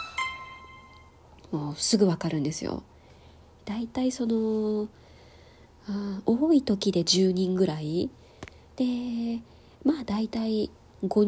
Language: Japanese